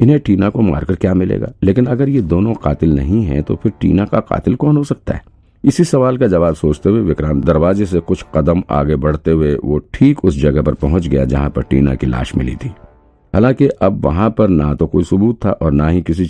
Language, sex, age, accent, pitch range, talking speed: Hindi, male, 50-69, native, 75-95 Hz, 230 wpm